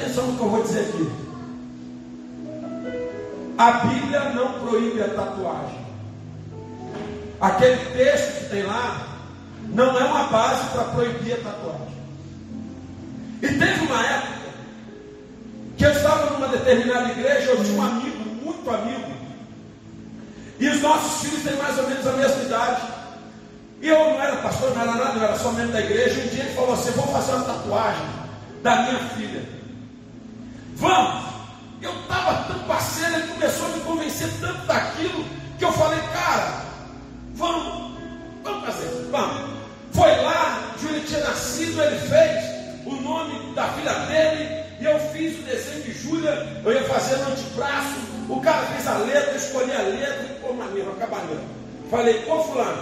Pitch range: 230-295 Hz